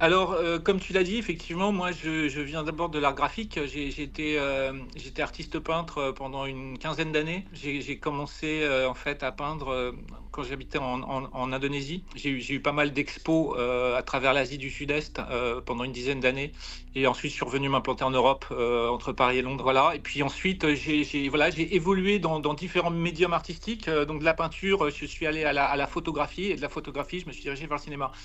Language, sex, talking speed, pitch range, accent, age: French, male, 225 wpm, 140-170 Hz, French, 40-59